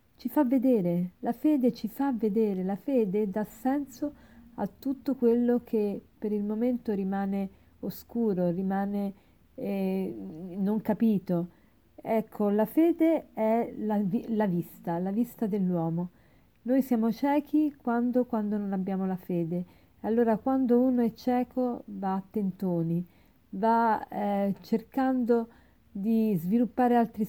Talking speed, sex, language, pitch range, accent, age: 130 wpm, female, Italian, 185-235 Hz, native, 40-59